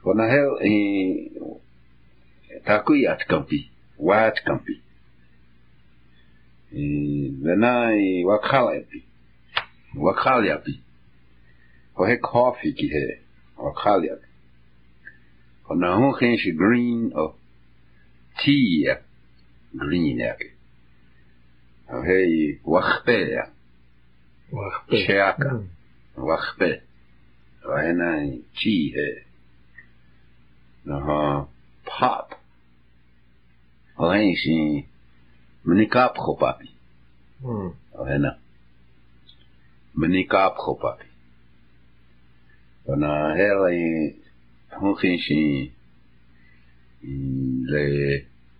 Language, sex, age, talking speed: English, male, 60-79, 45 wpm